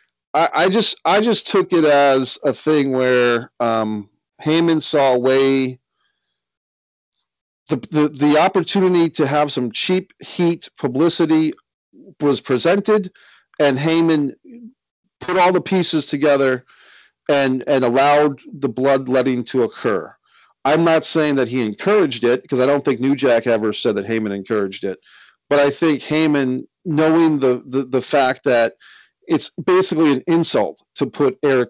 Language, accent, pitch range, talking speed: English, American, 125-160 Hz, 150 wpm